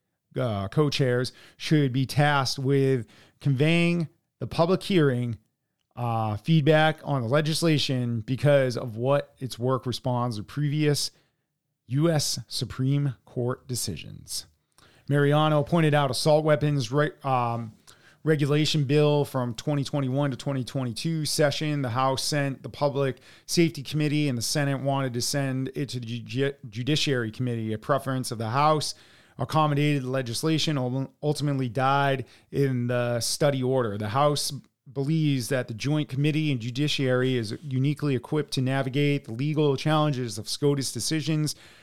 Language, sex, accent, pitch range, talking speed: English, male, American, 125-150 Hz, 135 wpm